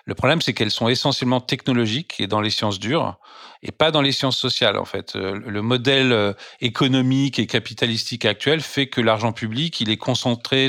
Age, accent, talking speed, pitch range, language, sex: 40-59, French, 185 wpm, 110-135 Hz, French, male